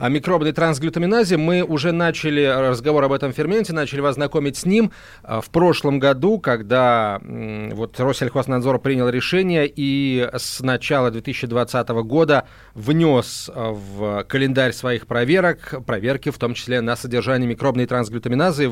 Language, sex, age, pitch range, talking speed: Russian, male, 30-49, 120-150 Hz, 130 wpm